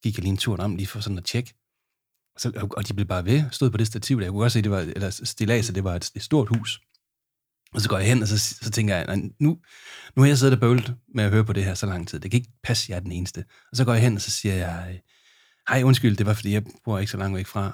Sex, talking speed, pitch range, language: male, 305 wpm, 100-125 Hz, Danish